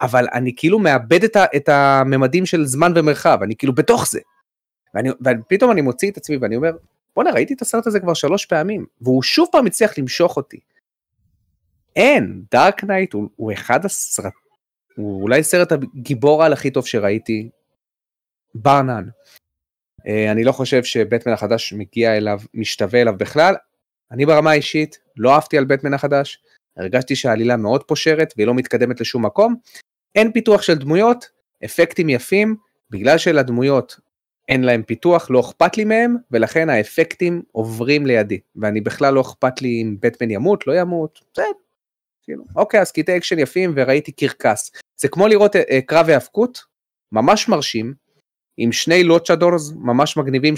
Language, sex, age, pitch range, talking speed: Hebrew, male, 30-49, 120-175 Hz, 155 wpm